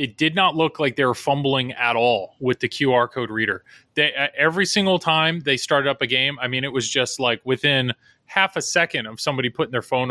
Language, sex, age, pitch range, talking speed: English, male, 30-49, 125-160 Hz, 230 wpm